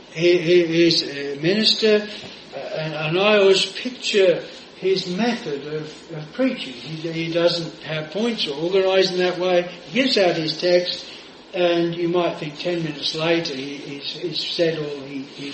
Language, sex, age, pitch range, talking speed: English, male, 60-79, 155-210 Hz, 165 wpm